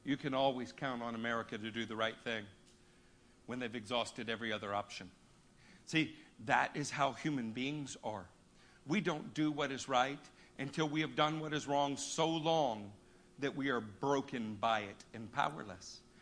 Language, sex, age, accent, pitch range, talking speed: English, male, 50-69, American, 135-185 Hz, 175 wpm